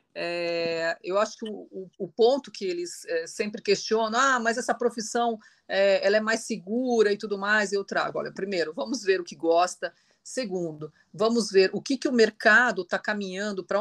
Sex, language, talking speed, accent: female, Portuguese, 180 wpm, Brazilian